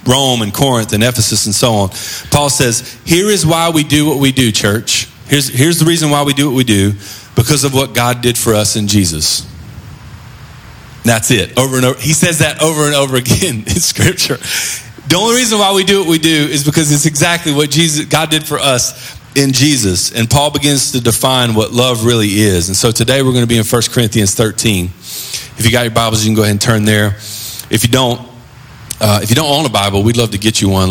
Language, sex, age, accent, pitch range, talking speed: English, male, 40-59, American, 100-135 Hz, 235 wpm